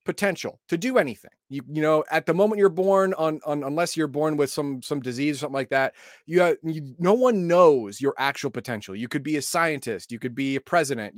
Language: English